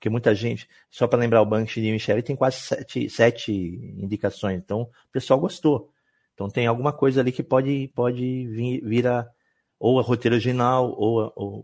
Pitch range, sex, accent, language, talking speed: 105-130 Hz, male, Brazilian, Portuguese, 185 wpm